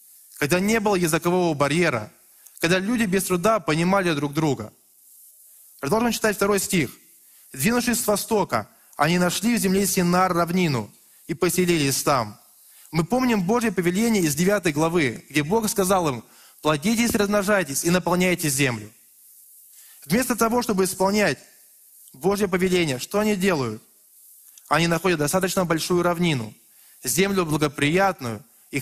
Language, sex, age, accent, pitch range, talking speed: Russian, male, 20-39, native, 150-205 Hz, 125 wpm